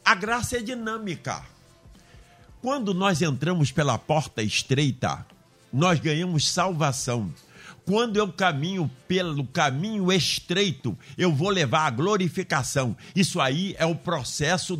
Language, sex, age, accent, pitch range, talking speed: Portuguese, male, 60-79, Brazilian, 145-195 Hz, 120 wpm